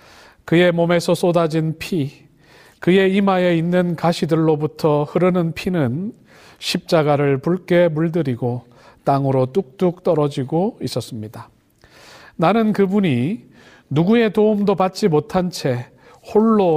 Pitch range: 145-180 Hz